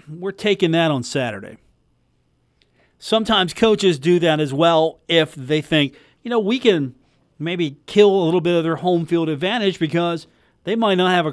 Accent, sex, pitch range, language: American, male, 140-180 Hz, English